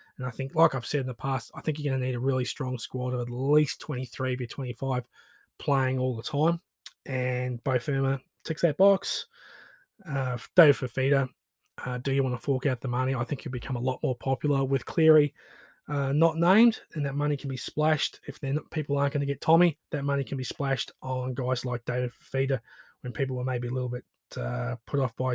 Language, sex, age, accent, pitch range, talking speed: English, male, 20-39, Australian, 135-165 Hz, 225 wpm